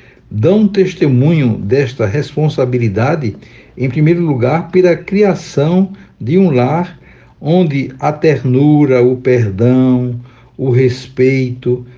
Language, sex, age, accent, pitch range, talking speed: Portuguese, male, 60-79, Brazilian, 125-175 Hz, 95 wpm